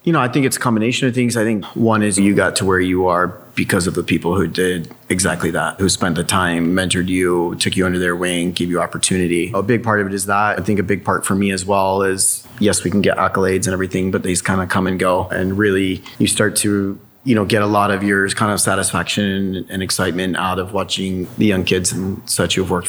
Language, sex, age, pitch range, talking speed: English, male, 30-49, 95-105 Hz, 260 wpm